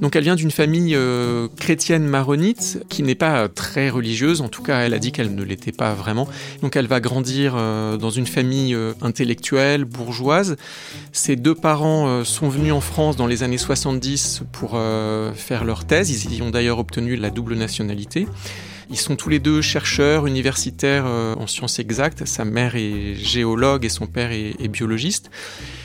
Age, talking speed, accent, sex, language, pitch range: 40-59, 190 wpm, French, male, French, 115-145 Hz